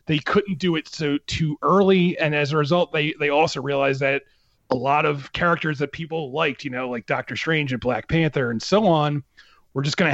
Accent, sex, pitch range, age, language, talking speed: American, male, 130-155 Hz, 30-49, English, 230 wpm